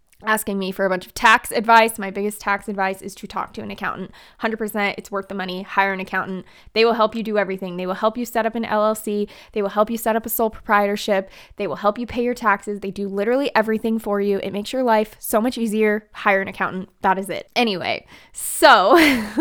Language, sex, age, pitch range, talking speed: English, female, 20-39, 200-245 Hz, 240 wpm